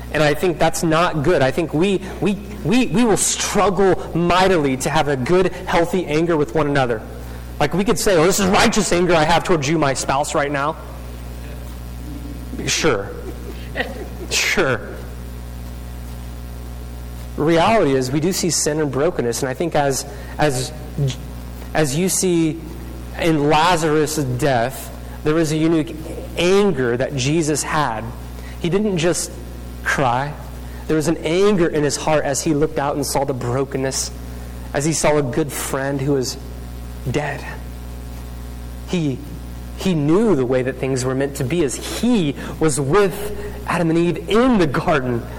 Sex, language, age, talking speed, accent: male, English, 30-49, 160 wpm, American